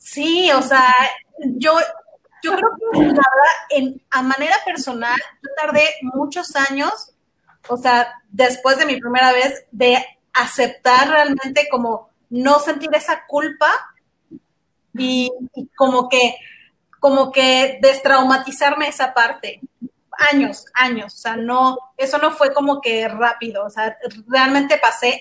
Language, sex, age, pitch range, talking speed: Spanish, female, 30-49, 250-290 Hz, 125 wpm